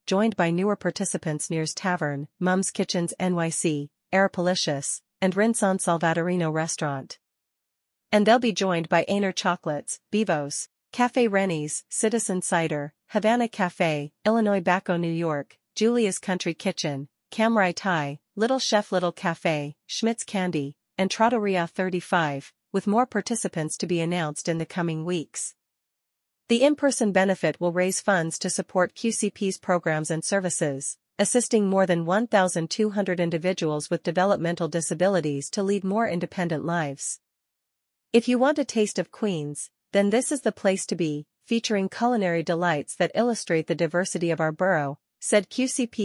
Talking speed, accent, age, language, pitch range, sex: 140 wpm, American, 40-59, English, 165-205 Hz, female